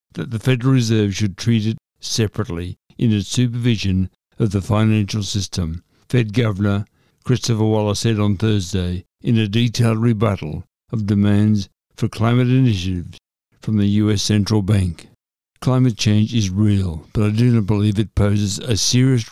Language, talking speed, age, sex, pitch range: English, 150 wpm, 60-79, male, 95-115 Hz